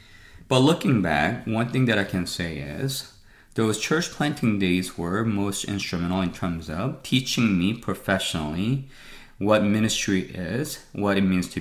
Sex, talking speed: male, 155 wpm